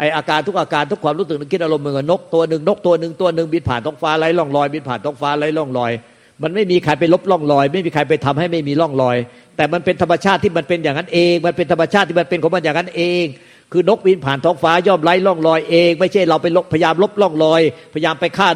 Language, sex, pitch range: Thai, male, 145-175 Hz